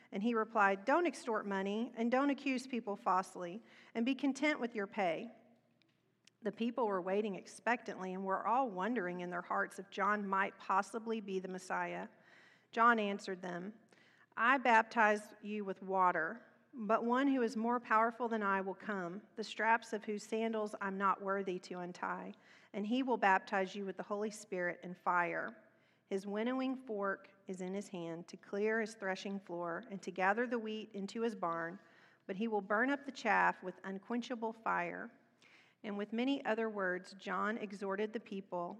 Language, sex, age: English, female, 40-59